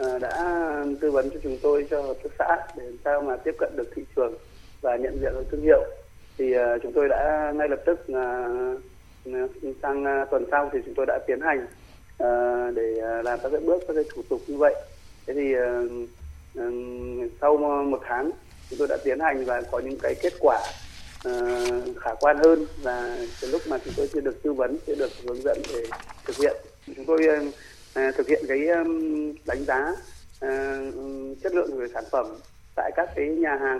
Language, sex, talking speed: Vietnamese, male, 195 wpm